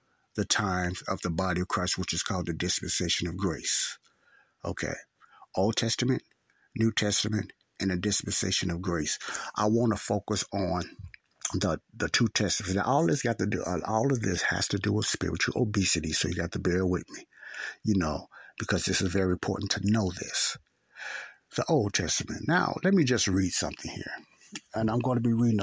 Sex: male